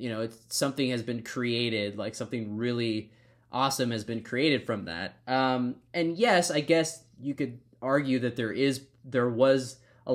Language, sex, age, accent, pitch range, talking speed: English, male, 20-39, American, 120-155 Hz, 170 wpm